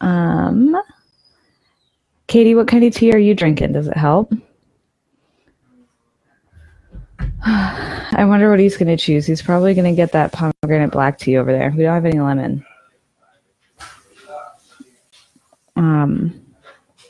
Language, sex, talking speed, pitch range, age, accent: English, female, 125 wpm, 140-175 Hz, 20-39, American